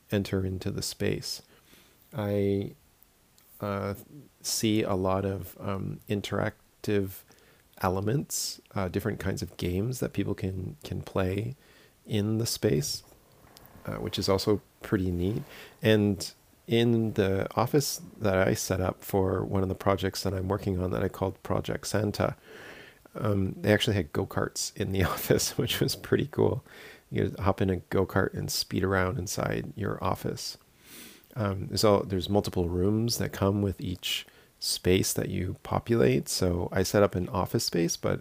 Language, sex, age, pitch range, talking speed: English, male, 40-59, 95-105 Hz, 155 wpm